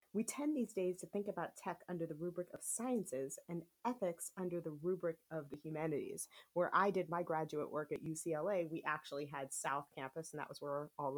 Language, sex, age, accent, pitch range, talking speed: English, female, 30-49, American, 160-215 Hz, 210 wpm